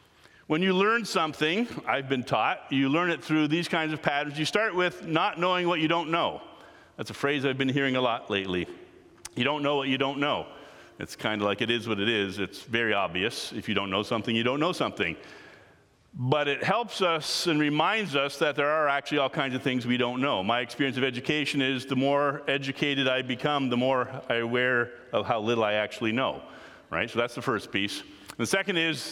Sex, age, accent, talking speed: male, 50-69, American, 225 wpm